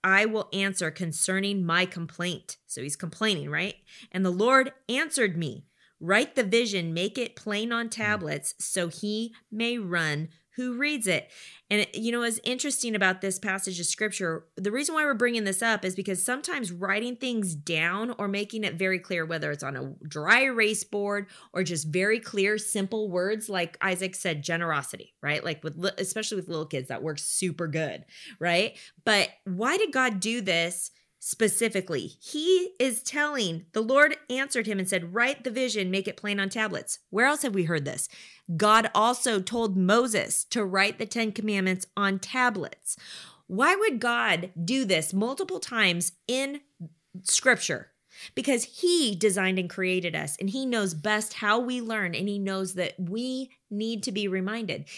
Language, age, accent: English, 20-39, American